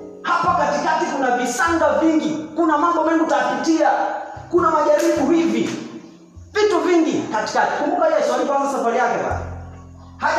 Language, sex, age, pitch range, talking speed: Swahili, male, 30-49, 260-325 Hz, 125 wpm